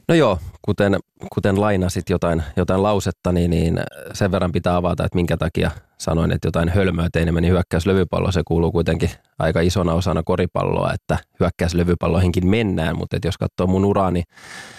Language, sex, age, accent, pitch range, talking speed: Finnish, male, 20-39, native, 85-100 Hz, 160 wpm